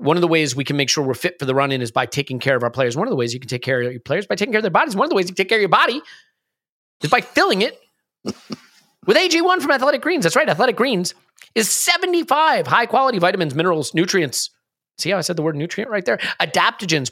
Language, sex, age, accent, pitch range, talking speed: English, male, 30-49, American, 145-200 Hz, 270 wpm